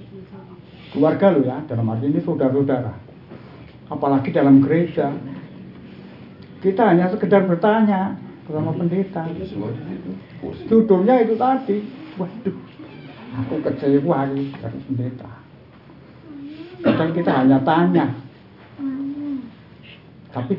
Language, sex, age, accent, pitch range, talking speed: Indonesian, male, 60-79, native, 125-160 Hz, 85 wpm